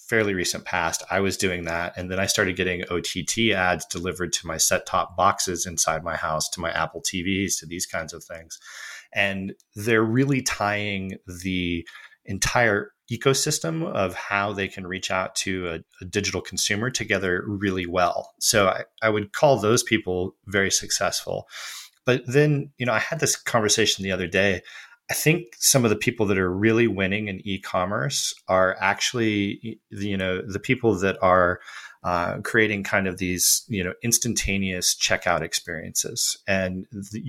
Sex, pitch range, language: male, 90-110 Hz, English